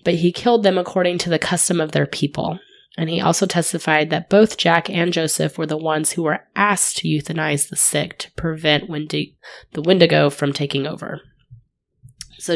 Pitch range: 150-195 Hz